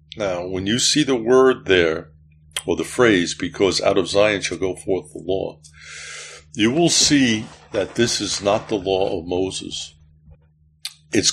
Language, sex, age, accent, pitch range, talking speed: English, male, 60-79, American, 75-100 Hz, 165 wpm